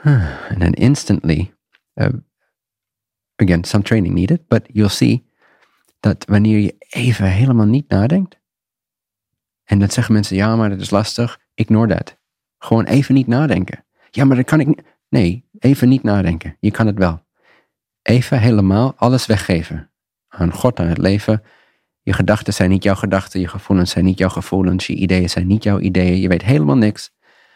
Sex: male